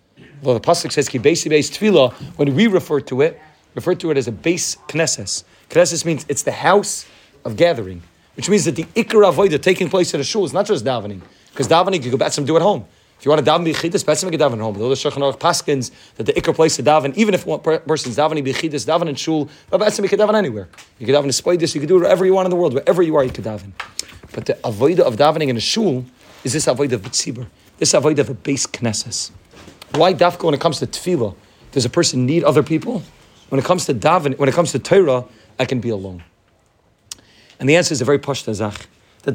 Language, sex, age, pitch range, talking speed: English, male, 30-49, 120-165 Hz, 230 wpm